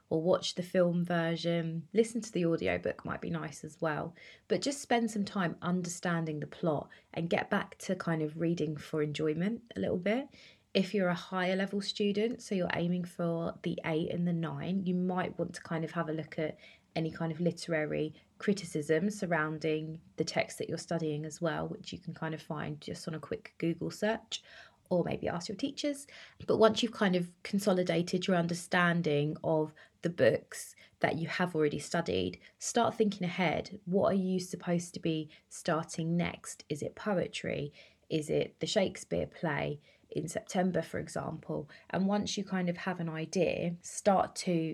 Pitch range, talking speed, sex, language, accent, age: 165-195 Hz, 185 wpm, female, English, British, 20-39